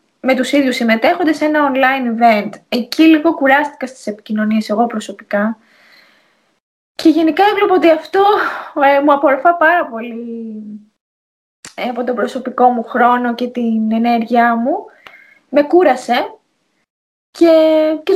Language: Greek